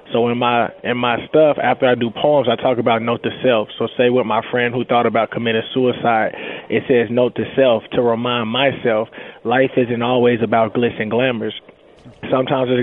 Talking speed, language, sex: 200 wpm, English, male